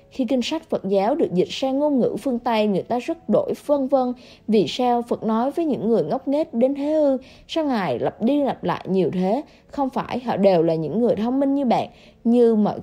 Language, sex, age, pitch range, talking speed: English, female, 20-39, 220-275 Hz, 240 wpm